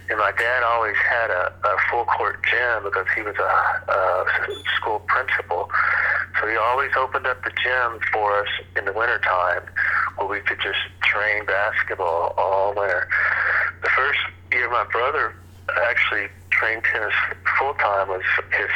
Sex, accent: male, American